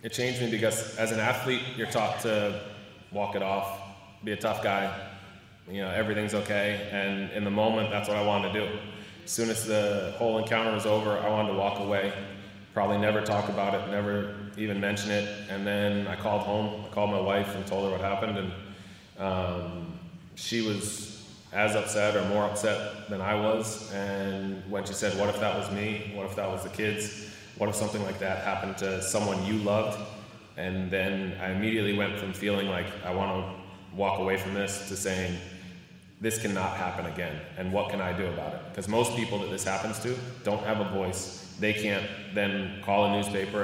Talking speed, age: 205 wpm, 20-39